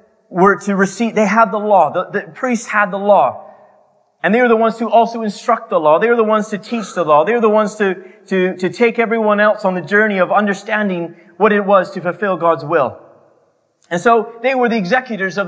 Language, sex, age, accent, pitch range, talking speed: English, male, 30-49, American, 195-230 Hz, 235 wpm